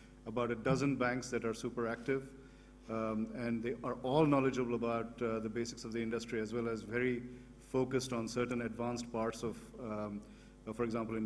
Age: 50-69